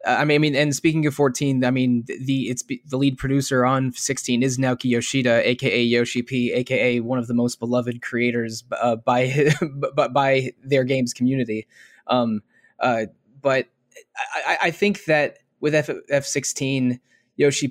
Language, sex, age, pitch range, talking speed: English, male, 20-39, 125-140 Hz, 175 wpm